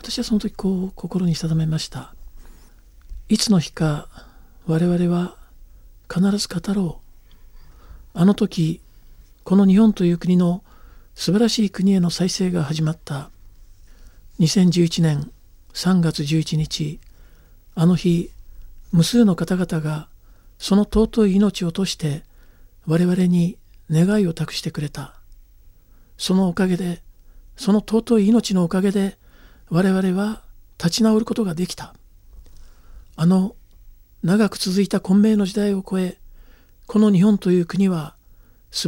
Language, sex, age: Japanese, male, 50-69